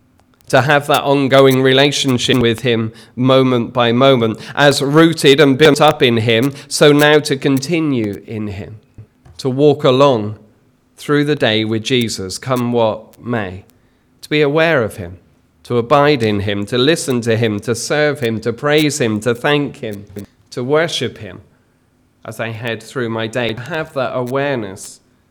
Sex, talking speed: male, 165 wpm